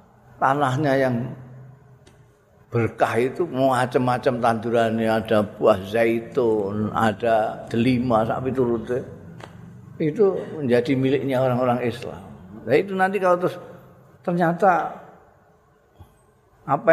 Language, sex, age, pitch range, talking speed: Indonesian, male, 50-69, 120-160 Hz, 90 wpm